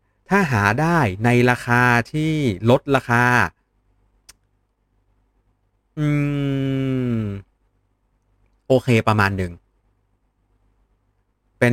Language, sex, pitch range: Thai, male, 95-120 Hz